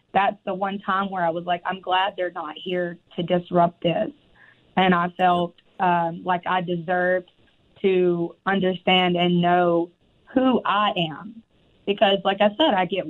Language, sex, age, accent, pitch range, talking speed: English, female, 20-39, American, 175-205 Hz, 165 wpm